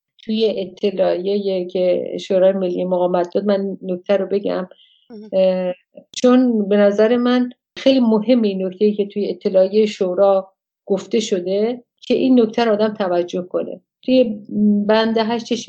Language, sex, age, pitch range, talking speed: English, female, 50-69, 190-220 Hz, 120 wpm